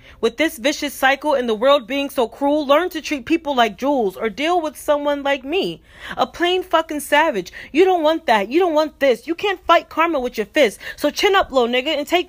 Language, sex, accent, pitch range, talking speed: English, female, American, 250-315 Hz, 235 wpm